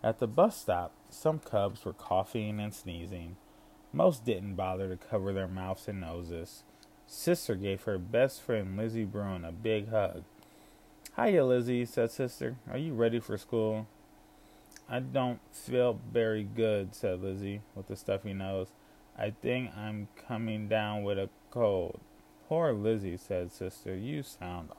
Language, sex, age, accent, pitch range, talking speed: English, male, 20-39, American, 95-120 Hz, 150 wpm